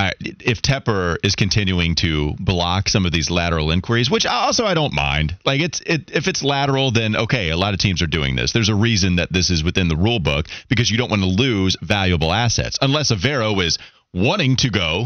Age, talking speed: 30-49, 225 wpm